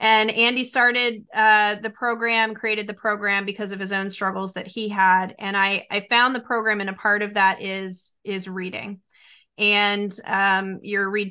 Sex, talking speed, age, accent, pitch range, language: female, 185 wpm, 30-49, American, 195-225 Hz, English